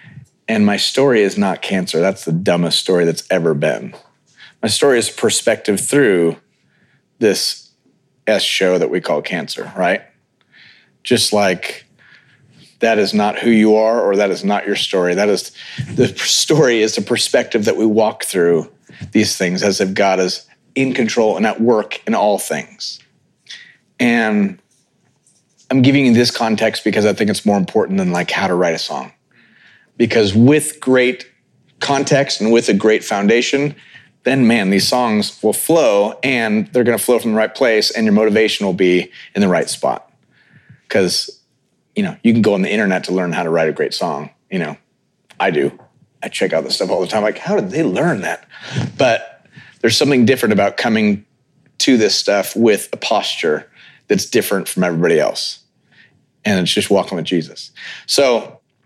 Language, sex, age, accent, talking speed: English, male, 40-59, American, 180 wpm